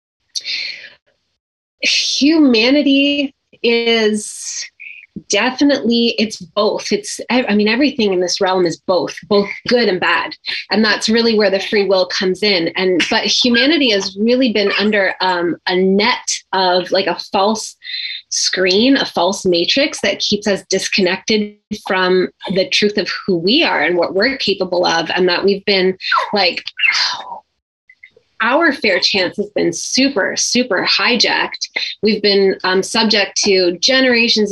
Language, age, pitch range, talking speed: English, 20-39, 185-225 Hz, 140 wpm